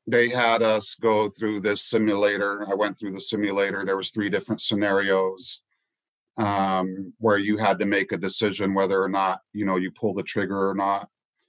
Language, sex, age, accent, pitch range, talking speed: English, male, 40-59, American, 95-110 Hz, 190 wpm